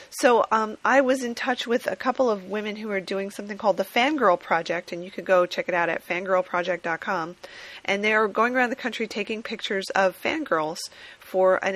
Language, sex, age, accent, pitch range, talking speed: English, female, 30-49, American, 180-225 Hz, 210 wpm